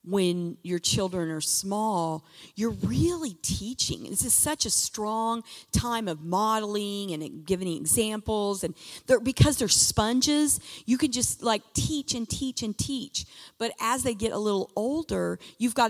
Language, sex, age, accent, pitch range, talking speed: English, female, 40-59, American, 185-240 Hz, 160 wpm